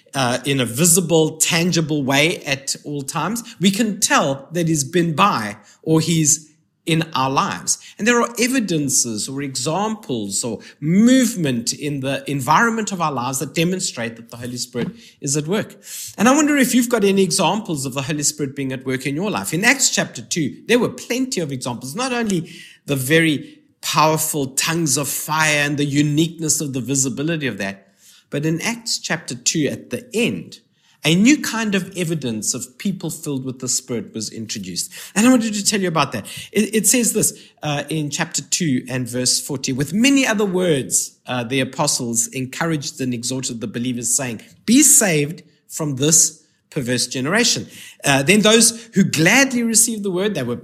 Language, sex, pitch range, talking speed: English, male, 135-205 Hz, 185 wpm